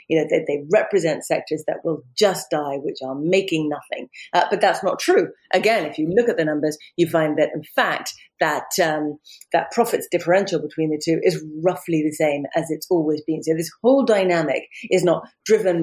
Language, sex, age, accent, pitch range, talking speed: English, female, 30-49, British, 155-185 Hz, 205 wpm